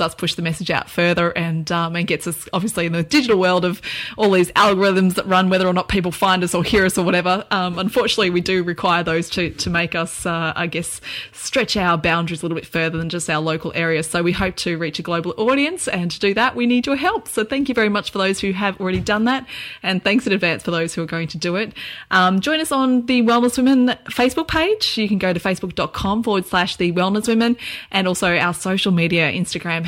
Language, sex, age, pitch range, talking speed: English, female, 20-39, 175-215 Hz, 245 wpm